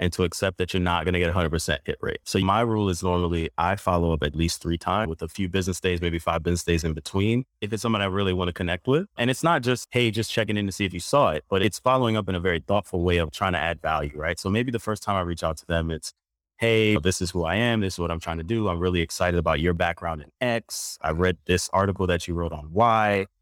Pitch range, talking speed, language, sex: 85-105 Hz, 285 wpm, English, male